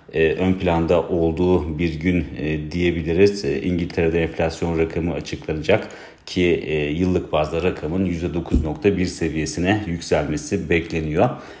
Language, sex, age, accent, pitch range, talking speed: Turkish, male, 40-59, native, 80-90 Hz, 115 wpm